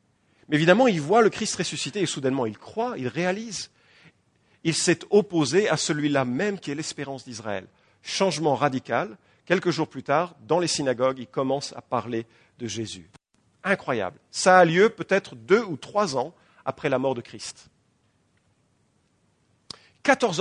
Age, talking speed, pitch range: 50-69, 155 wpm, 130-195 Hz